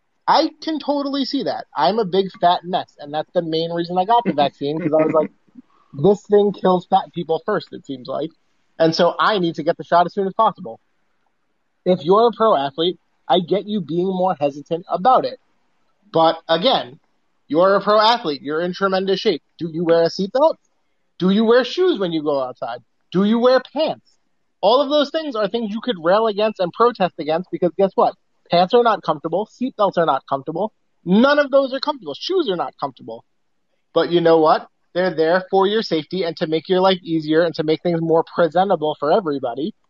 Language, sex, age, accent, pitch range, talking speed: English, male, 30-49, American, 160-215 Hz, 210 wpm